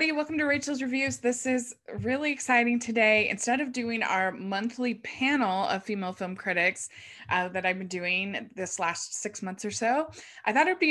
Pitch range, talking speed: 185-235 Hz, 185 wpm